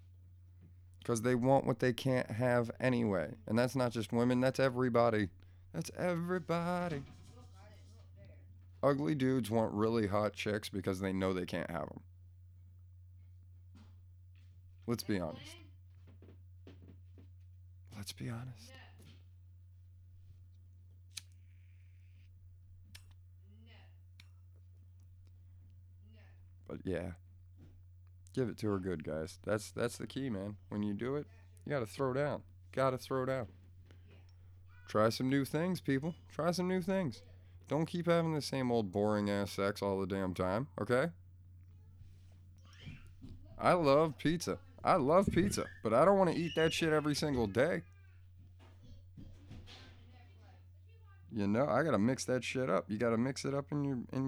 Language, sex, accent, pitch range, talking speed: English, male, American, 90-120 Hz, 130 wpm